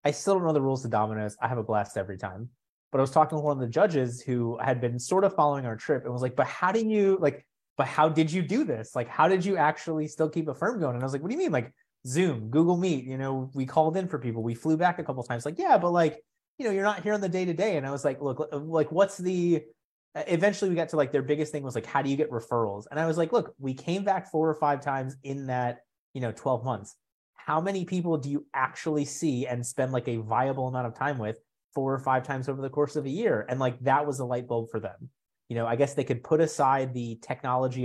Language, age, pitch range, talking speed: English, 30-49, 125-160 Hz, 285 wpm